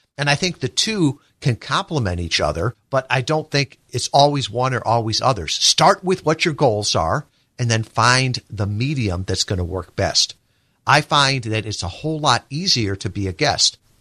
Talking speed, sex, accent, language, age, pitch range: 200 wpm, male, American, English, 50-69, 110-145 Hz